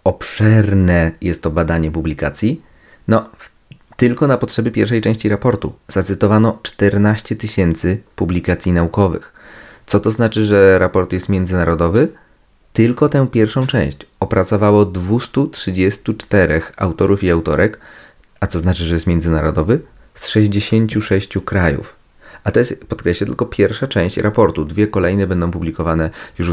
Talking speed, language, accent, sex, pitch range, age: 125 wpm, Polish, native, male, 85-105 Hz, 30-49